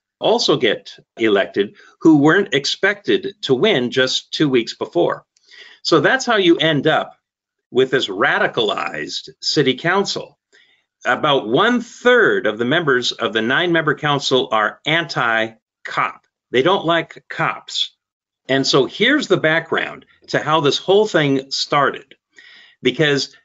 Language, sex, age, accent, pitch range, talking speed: English, male, 50-69, American, 135-205 Hz, 130 wpm